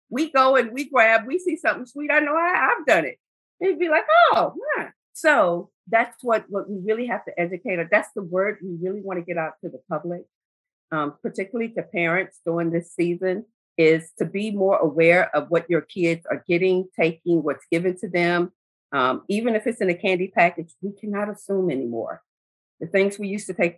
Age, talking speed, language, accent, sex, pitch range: 50-69, 210 wpm, English, American, female, 170-220 Hz